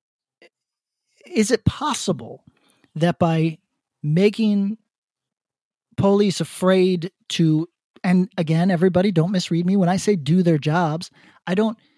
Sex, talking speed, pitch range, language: male, 115 wpm, 165-200 Hz, English